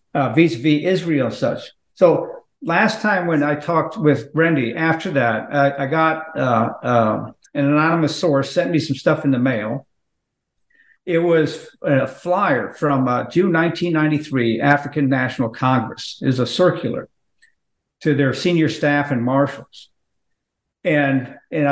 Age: 50-69